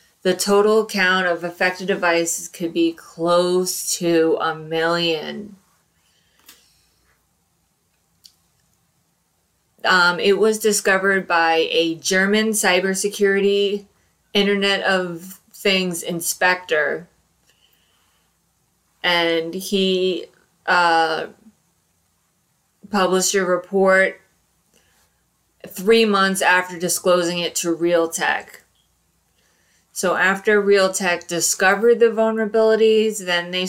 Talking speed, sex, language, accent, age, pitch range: 80 wpm, female, English, American, 20-39, 170-195 Hz